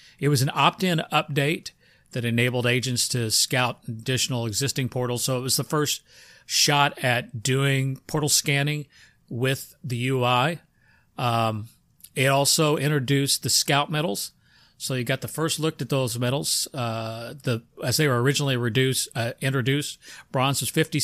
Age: 40-59